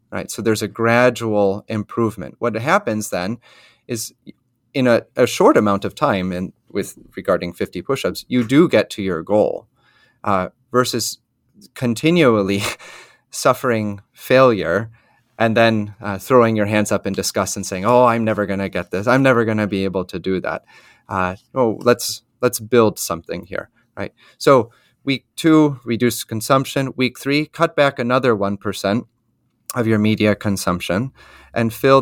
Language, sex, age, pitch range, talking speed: English, male, 30-49, 100-125 Hz, 160 wpm